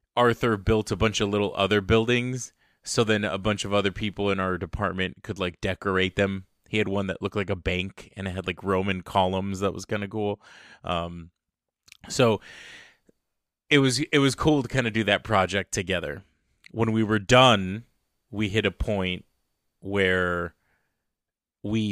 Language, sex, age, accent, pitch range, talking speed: English, male, 20-39, American, 95-110 Hz, 175 wpm